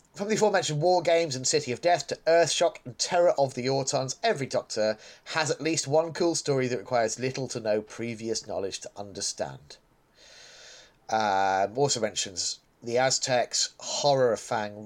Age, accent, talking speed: 30-49, British, 165 wpm